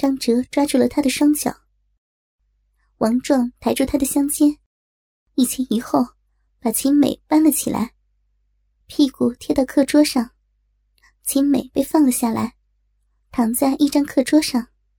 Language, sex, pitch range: Chinese, male, 245-290 Hz